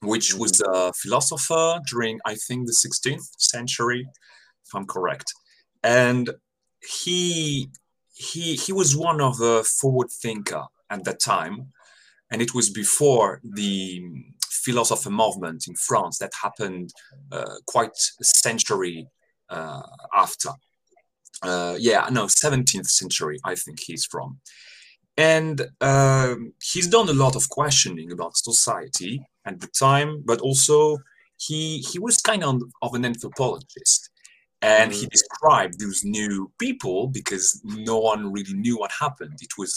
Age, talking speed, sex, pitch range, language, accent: 30-49, 135 wpm, male, 110-140 Hz, English, French